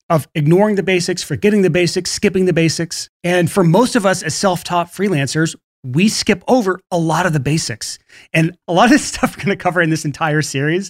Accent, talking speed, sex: American, 215 wpm, male